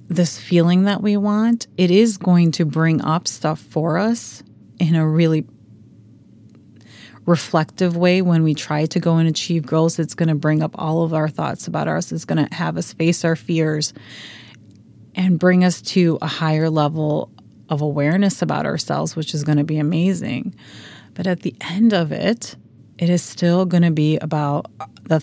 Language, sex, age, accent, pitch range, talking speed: English, female, 30-49, American, 145-180 Hz, 185 wpm